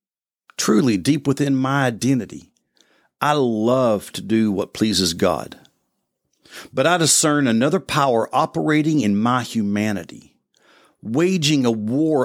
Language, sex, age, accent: English, male, 50-69, American